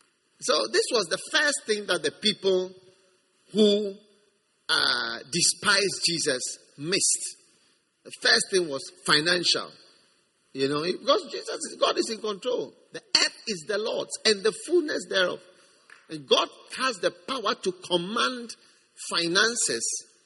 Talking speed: 135 wpm